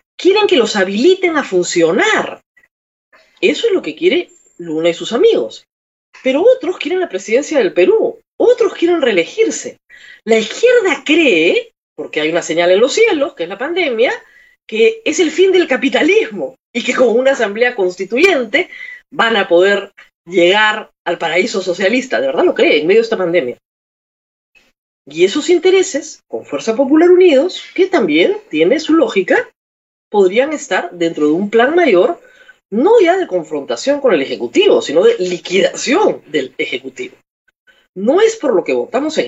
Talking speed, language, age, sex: 160 wpm, Spanish, 40-59, female